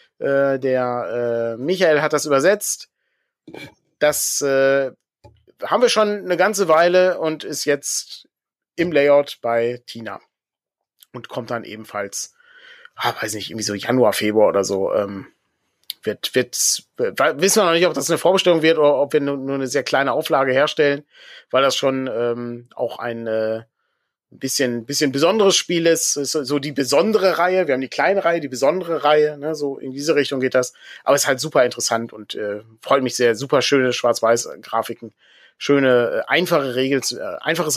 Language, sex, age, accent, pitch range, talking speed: German, male, 30-49, German, 115-150 Hz, 165 wpm